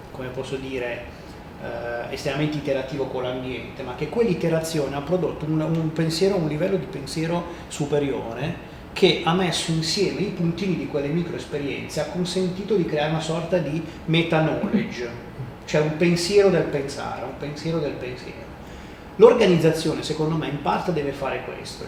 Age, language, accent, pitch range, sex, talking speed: 30-49, Italian, native, 140-165 Hz, male, 155 wpm